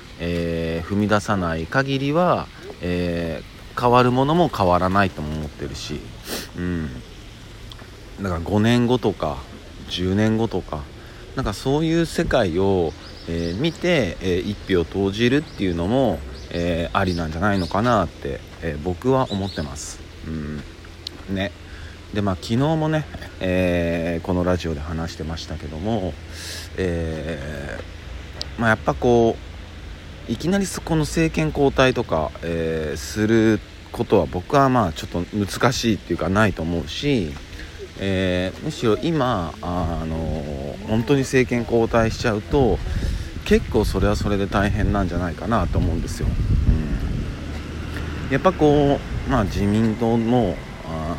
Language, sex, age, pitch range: Japanese, male, 40-59, 85-115 Hz